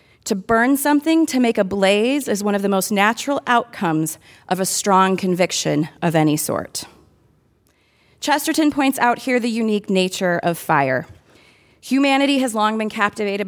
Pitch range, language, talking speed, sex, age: 190-265 Hz, English, 155 wpm, female, 30-49